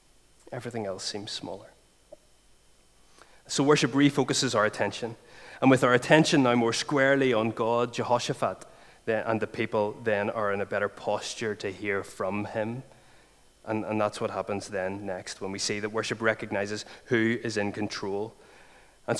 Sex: male